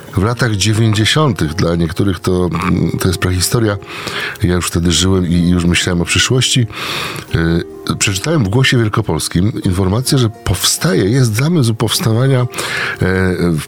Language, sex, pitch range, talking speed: Polish, male, 90-115 Hz, 125 wpm